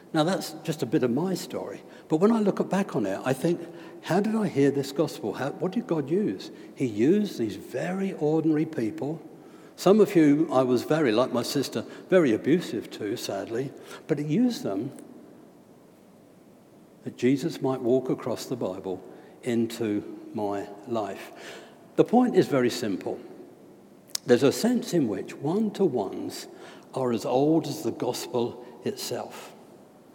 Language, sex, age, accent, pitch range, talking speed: English, male, 60-79, British, 130-185 Hz, 155 wpm